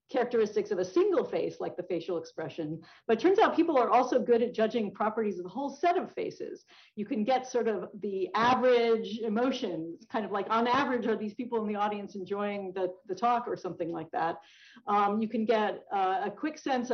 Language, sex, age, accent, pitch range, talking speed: English, female, 50-69, American, 195-255 Hz, 215 wpm